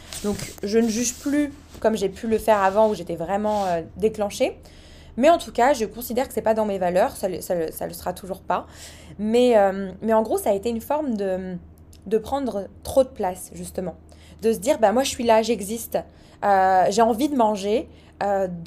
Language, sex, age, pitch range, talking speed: French, female, 20-39, 205-260 Hz, 220 wpm